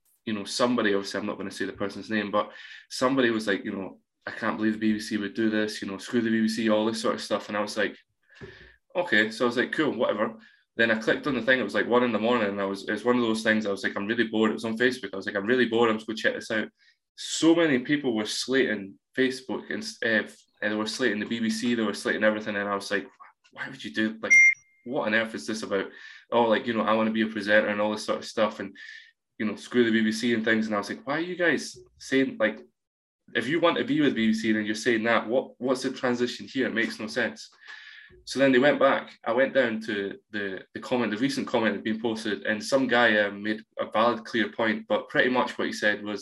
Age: 20-39